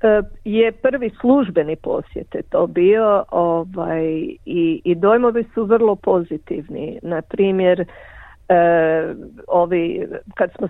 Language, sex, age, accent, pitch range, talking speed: Croatian, female, 50-69, native, 170-215 Hz, 100 wpm